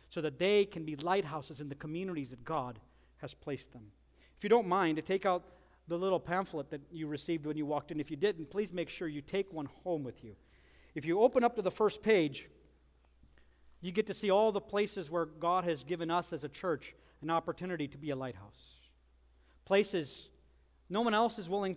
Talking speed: 215 wpm